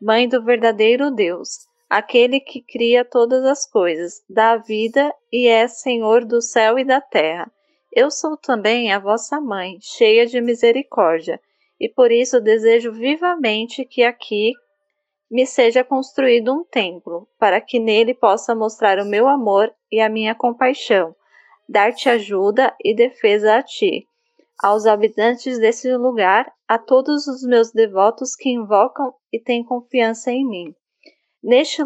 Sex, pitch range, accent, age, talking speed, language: female, 220-275 Hz, Brazilian, 10-29, 145 wpm, Portuguese